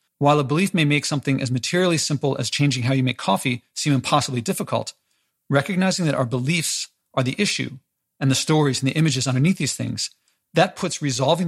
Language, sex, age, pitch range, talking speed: English, male, 40-59, 130-160 Hz, 195 wpm